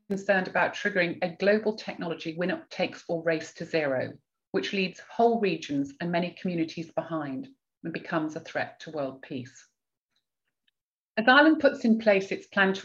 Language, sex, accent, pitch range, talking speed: English, female, British, 160-215 Hz, 165 wpm